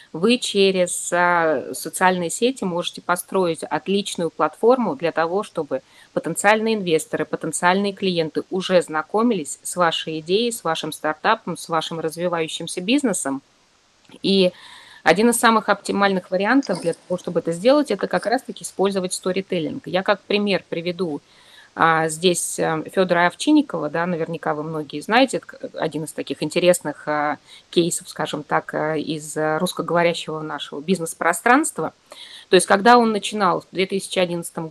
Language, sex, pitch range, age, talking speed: Russian, female, 160-200 Hz, 20-39, 125 wpm